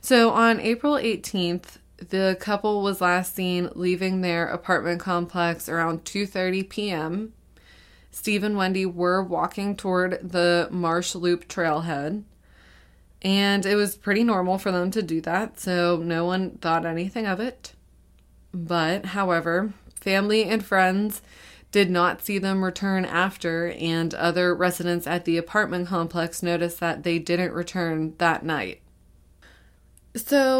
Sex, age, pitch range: female, 20-39, 165-195 Hz